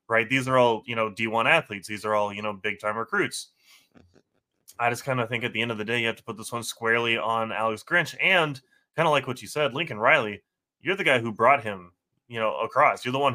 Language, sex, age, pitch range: English, male, 20-39, 110-125 Hz